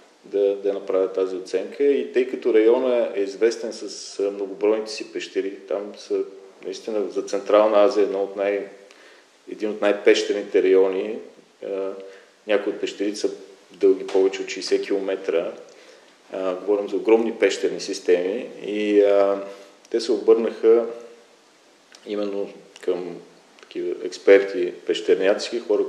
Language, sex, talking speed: Bulgarian, male, 125 wpm